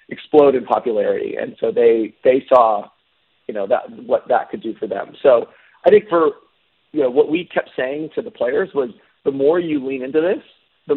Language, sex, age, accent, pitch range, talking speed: English, male, 30-49, American, 135-175 Hz, 210 wpm